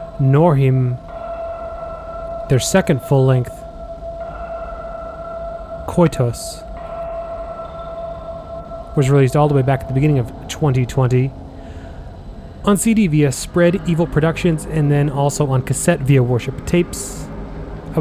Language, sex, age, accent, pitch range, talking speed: English, male, 30-49, American, 125-175 Hz, 105 wpm